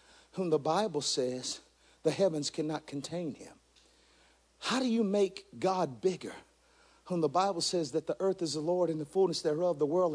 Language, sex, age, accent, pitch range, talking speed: English, male, 50-69, American, 155-190 Hz, 185 wpm